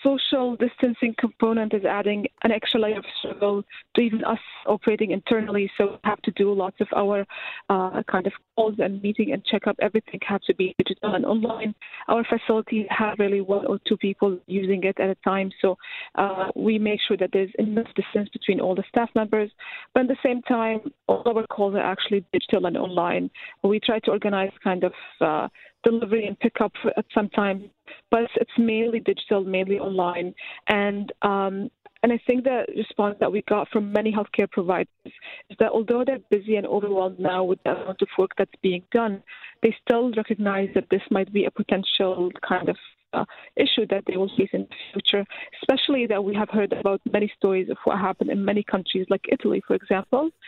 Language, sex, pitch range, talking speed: English, female, 195-230 Hz, 195 wpm